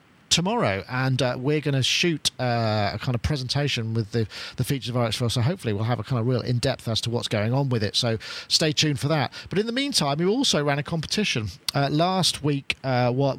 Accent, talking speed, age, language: British, 240 wpm, 40-59, English